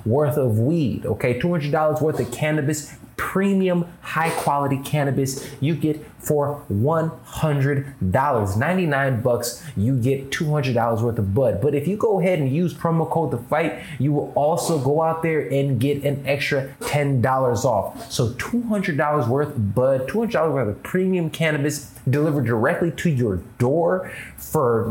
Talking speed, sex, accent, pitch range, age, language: 180 wpm, male, American, 120-150 Hz, 20-39, English